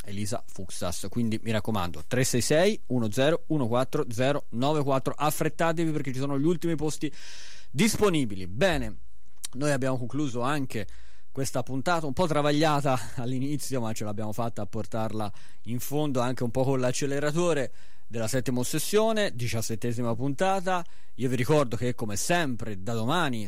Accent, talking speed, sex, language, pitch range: native, 135 wpm, male, Italian, 100-140 Hz